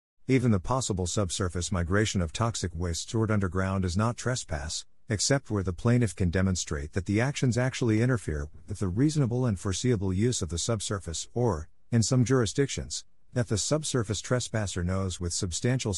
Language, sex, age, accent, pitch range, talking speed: English, male, 50-69, American, 90-115 Hz, 165 wpm